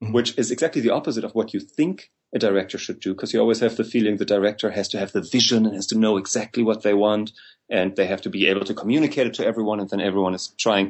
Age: 30-49